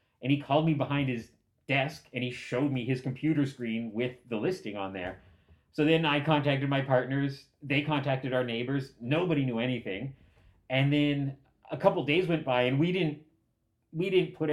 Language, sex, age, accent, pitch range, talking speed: English, male, 30-49, American, 120-150 Hz, 190 wpm